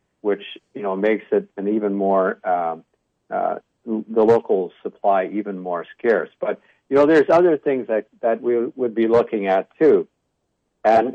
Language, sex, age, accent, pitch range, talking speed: English, male, 60-79, American, 95-125 Hz, 165 wpm